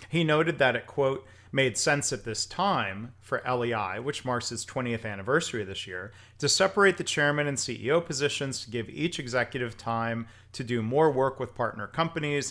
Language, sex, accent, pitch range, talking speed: English, male, American, 110-145 Hz, 180 wpm